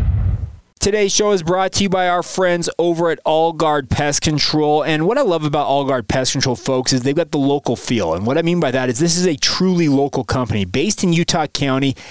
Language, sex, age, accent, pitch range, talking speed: English, male, 20-39, American, 130-155 Hz, 240 wpm